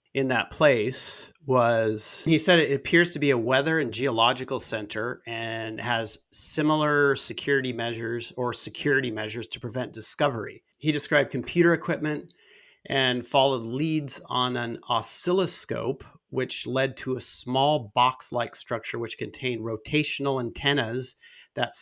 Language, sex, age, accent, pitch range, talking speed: English, male, 40-59, American, 115-140 Hz, 135 wpm